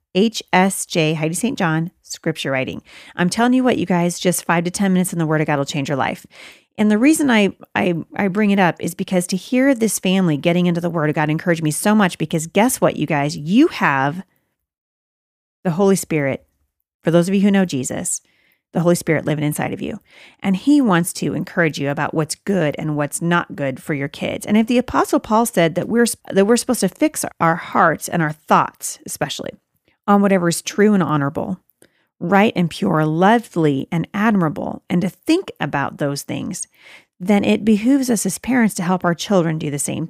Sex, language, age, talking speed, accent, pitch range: female, English, 30-49, 210 wpm, American, 160-210 Hz